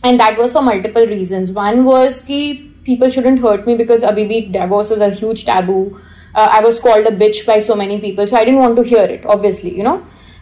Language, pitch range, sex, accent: English, 200-250 Hz, female, Indian